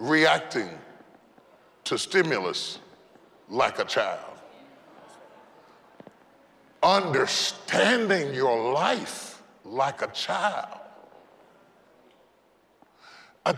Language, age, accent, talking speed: English, 40-59, American, 55 wpm